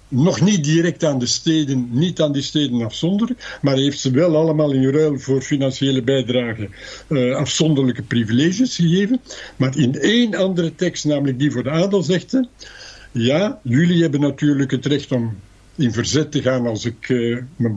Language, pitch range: Dutch, 125-165 Hz